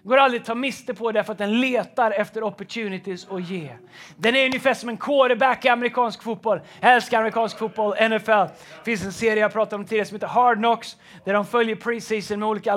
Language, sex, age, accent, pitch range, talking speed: Swedish, male, 30-49, native, 200-240 Hz, 215 wpm